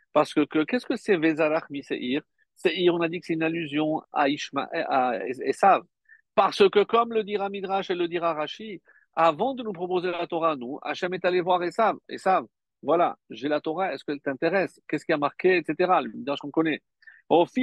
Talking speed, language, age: 210 wpm, French, 50-69